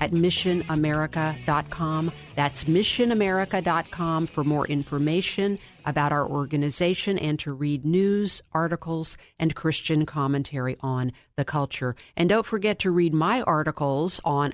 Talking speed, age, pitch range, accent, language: 120 wpm, 50-69, 145-180 Hz, American, English